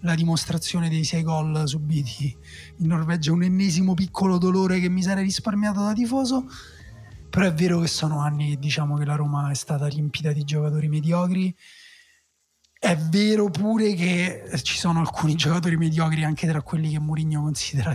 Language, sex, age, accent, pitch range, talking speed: Italian, male, 30-49, native, 155-185 Hz, 170 wpm